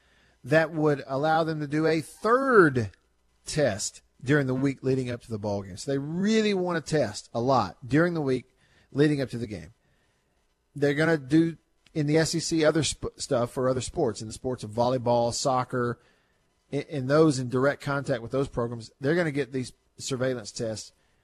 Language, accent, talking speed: English, American, 190 wpm